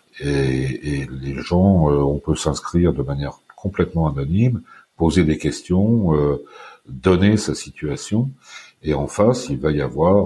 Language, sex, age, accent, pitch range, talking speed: French, male, 50-69, French, 75-105 Hz, 150 wpm